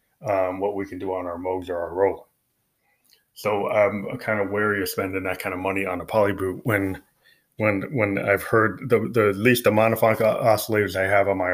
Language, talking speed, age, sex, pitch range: English, 225 wpm, 20-39, male, 95-110 Hz